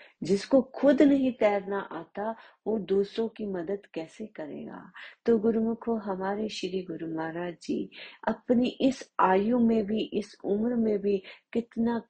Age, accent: 30-49, native